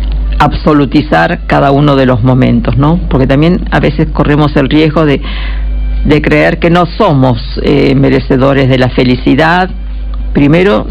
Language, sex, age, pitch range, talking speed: Spanish, female, 50-69, 135-170 Hz, 145 wpm